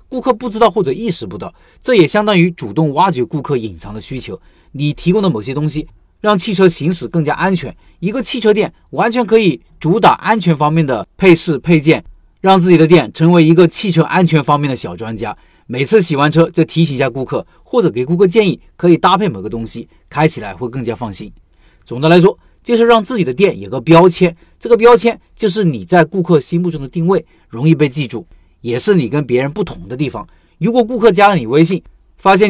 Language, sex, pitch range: Chinese, male, 125-185 Hz